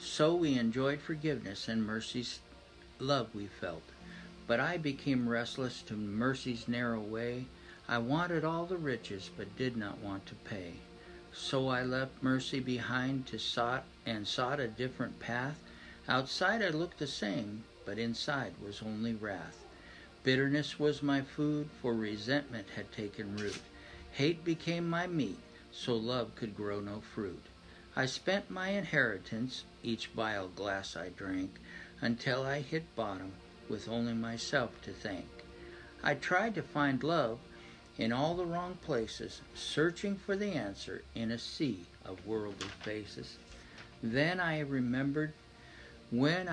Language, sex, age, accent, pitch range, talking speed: English, male, 60-79, American, 110-145 Hz, 145 wpm